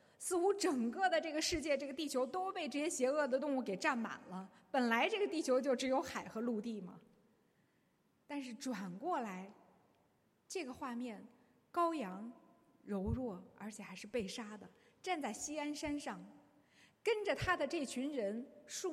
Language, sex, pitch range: Chinese, female, 230-305 Hz